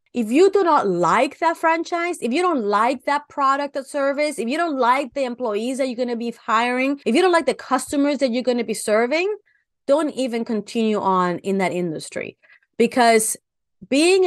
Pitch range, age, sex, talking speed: 225-295 Hz, 30-49, female, 200 wpm